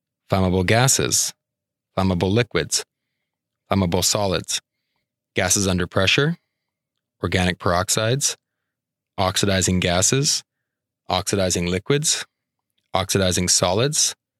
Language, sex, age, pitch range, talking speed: English, male, 20-39, 95-120 Hz, 70 wpm